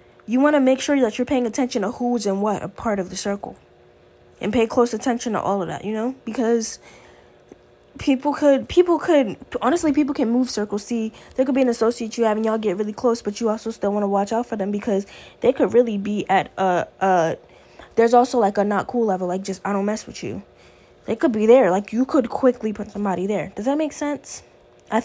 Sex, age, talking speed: female, 10-29, 235 wpm